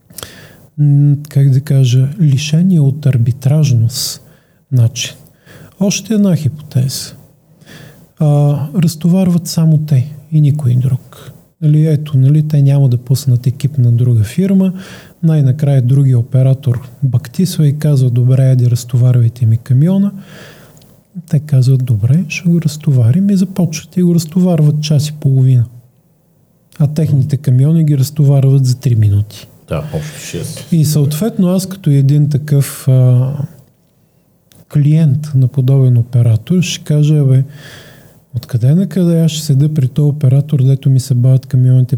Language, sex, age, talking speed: Bulgarian, male, 40-59, 125 wpm